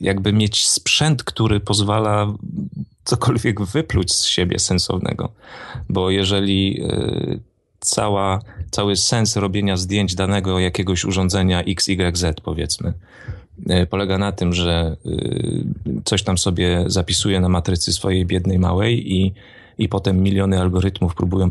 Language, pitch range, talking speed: Polish, 95-110 Hz, 110 wpm